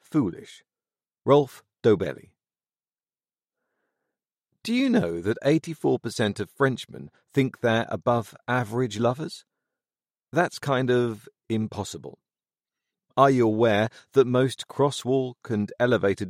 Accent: British